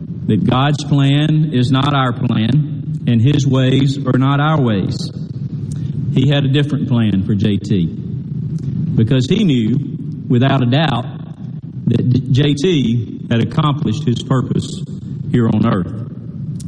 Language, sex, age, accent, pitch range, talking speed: English, male, 50-69, American, 130-155 Hz, 130 wpm